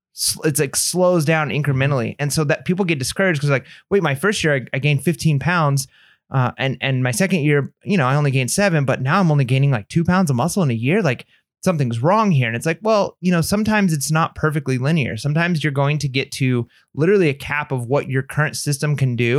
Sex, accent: male, American